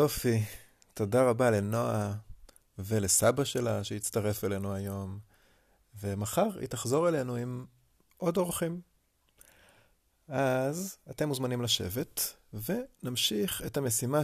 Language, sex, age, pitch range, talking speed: Hebrew, male, 30-49, 105-130 Hz, 95 wpm